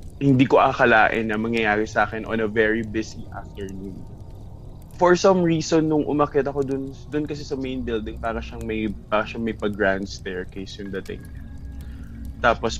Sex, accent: male, native